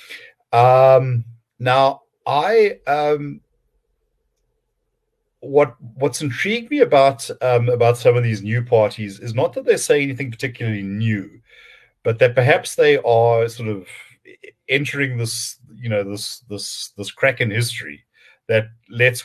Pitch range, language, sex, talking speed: 115-185 Hz, English, male, 135 wpm